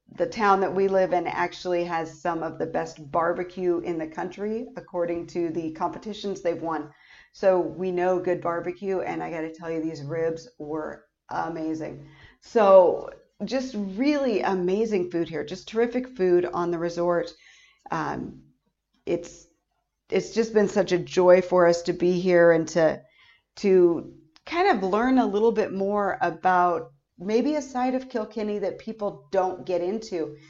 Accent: American